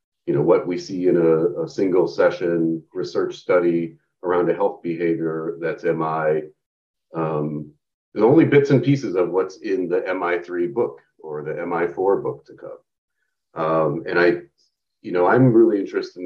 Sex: male